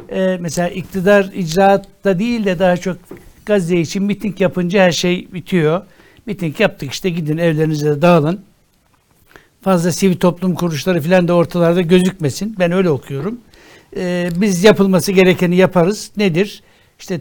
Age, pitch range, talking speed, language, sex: 60-79, 155-190 Hz, 135 wpm, Turkish, male